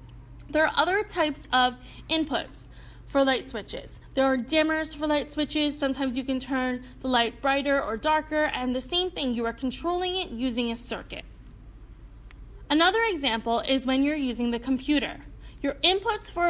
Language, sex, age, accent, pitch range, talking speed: English, female, 10-29, American, 260-325 Hz, 165 wpm